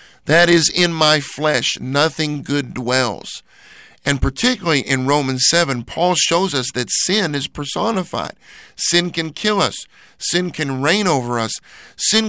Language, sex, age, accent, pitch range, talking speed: English, male, 50-69, American, 130-175 Hz, 145 wpm